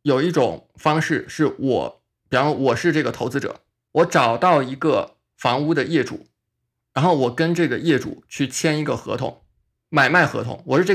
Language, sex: Chinese, male